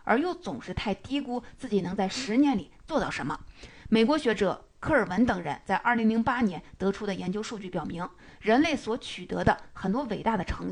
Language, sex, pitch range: Chinese, female, 195-250 Hz